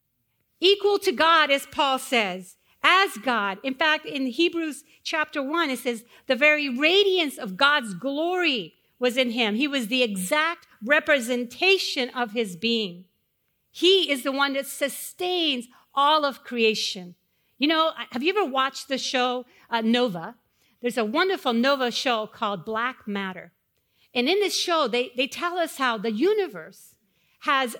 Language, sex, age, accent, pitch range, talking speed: English, female, 50-69, American, 230-305 Hz, 155 wpm